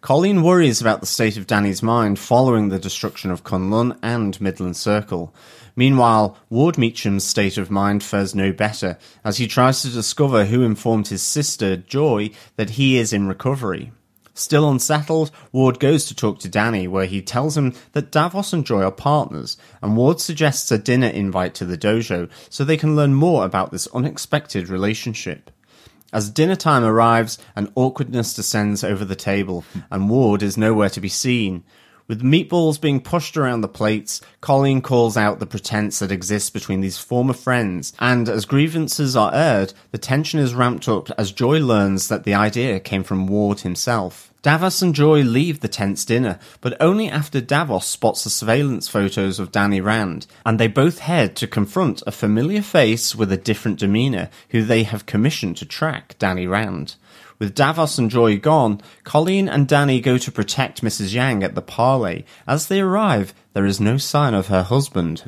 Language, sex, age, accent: English, male, 30-49, British